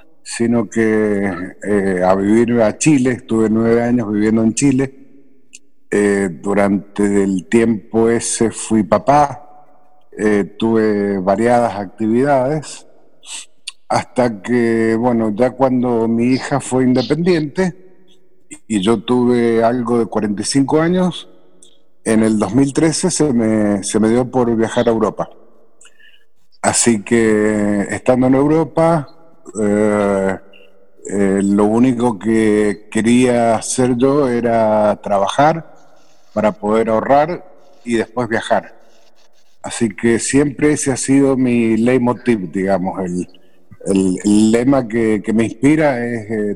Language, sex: Spanish, male